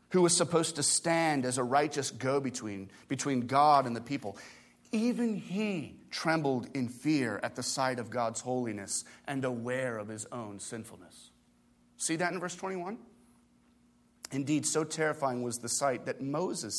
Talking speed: 155 wpm